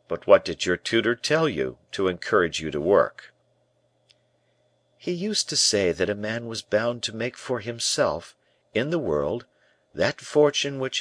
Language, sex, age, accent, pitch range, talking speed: English, male, 50-69, American, 95-135 Hz, 170 wpm